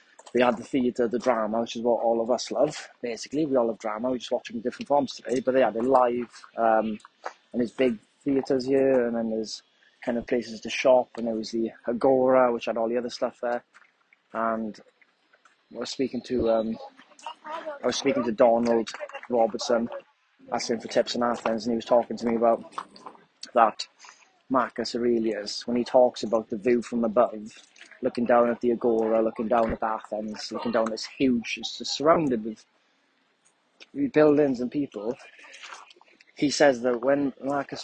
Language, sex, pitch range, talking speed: English, male, 115-130 Hz, 185 wpm